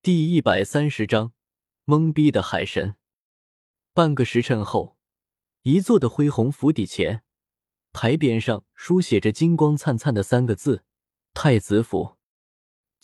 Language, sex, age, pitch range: Chinese, male, 20-39, 110-160 Hz